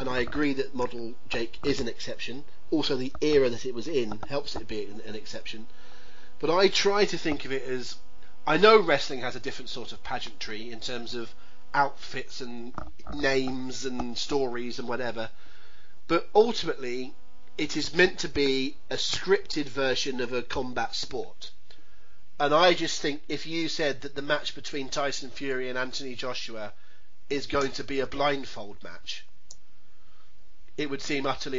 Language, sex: English, male